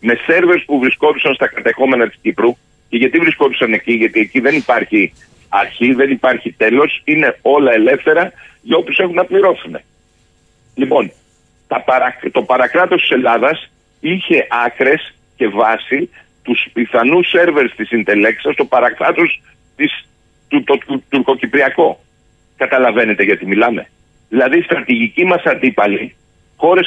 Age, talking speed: 50-69, 135 wpm